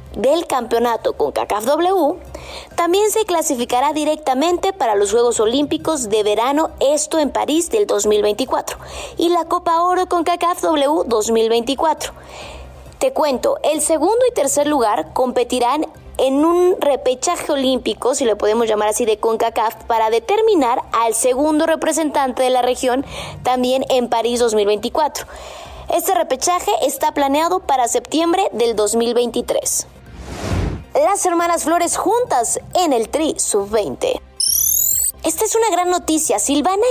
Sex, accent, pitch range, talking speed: female, Mexican, 240-345 Hz, 130 wpm